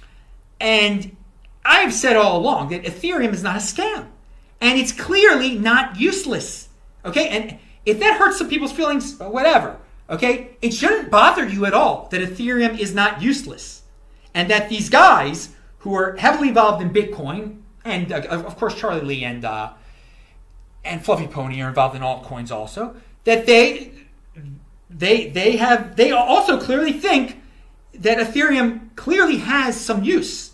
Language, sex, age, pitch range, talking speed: English, male, 30-49, 195-310 Hz, 150 wpm